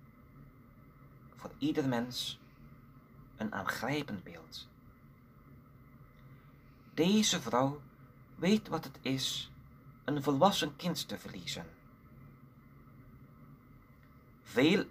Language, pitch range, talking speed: Dutch, 130-140 Hz, 70 wpm